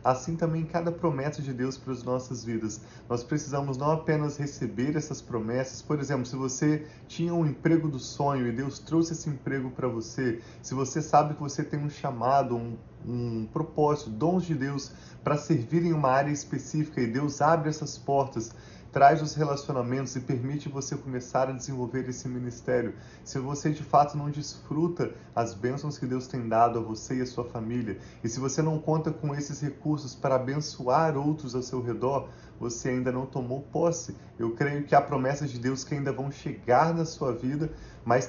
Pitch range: 125-150 Hz